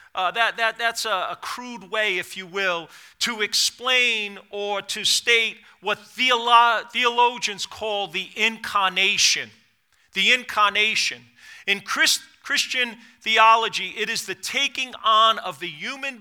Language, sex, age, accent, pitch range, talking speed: English, male, 40-59, American, 205-265 Hz, 120 wpm